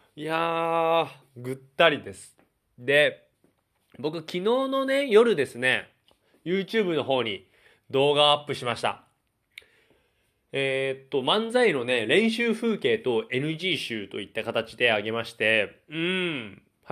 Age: 20-39